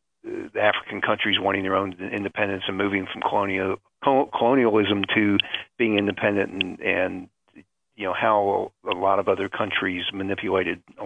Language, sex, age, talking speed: English, male, 50-69, 145 wpm